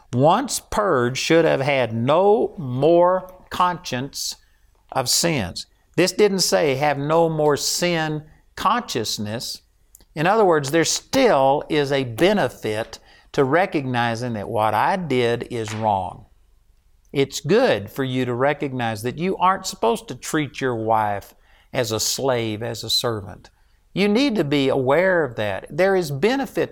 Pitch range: 125-185 Hz